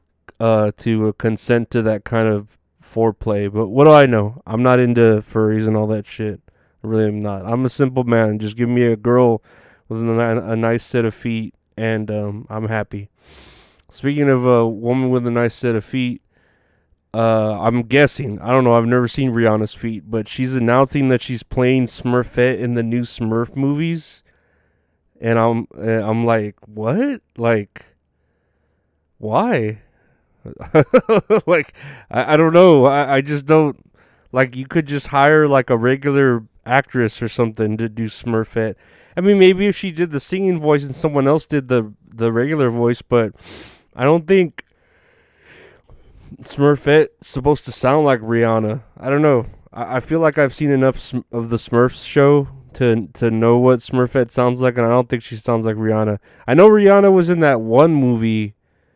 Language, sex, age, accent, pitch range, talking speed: English, male, 30-49, American, 110-135 Hz, 175 wpm